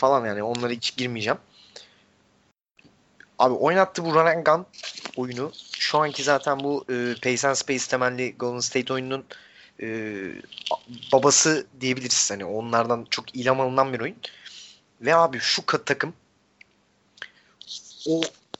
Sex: male